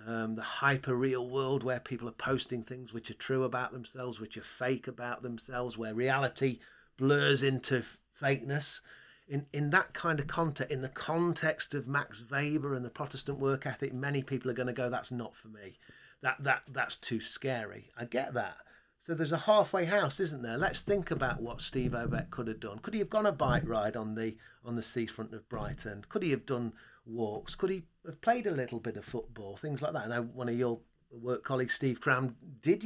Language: English